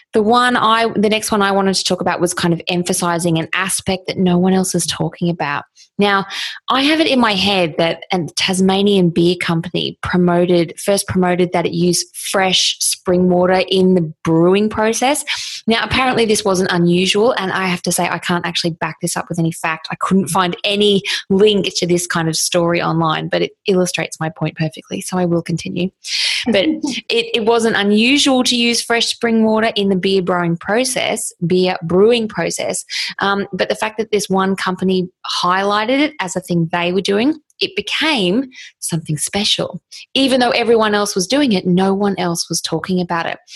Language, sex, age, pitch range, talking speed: English, female, 20-39, 175-215 Hz, 195 wpm